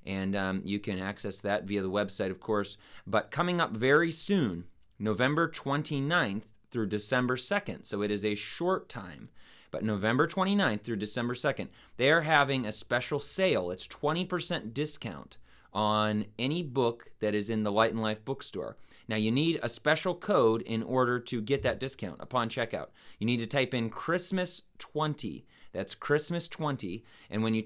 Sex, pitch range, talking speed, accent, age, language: male, 105-135 Hz, 165 wpm, American, 30-49, English